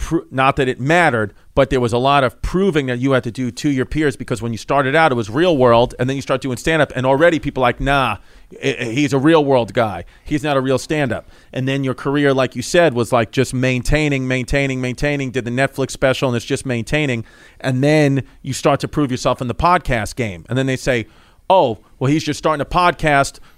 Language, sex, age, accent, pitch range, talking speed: English, male, 40-59, American, 125-150 Hz, 235 wpm